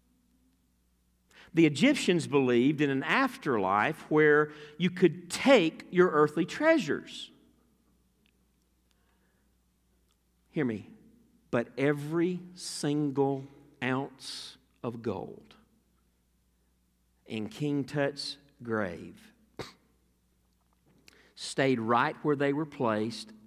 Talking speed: 80 wpm